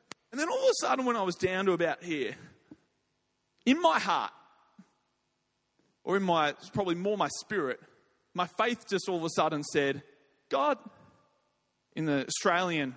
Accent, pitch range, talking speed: Australian, 150-205 Hz, 165 wpm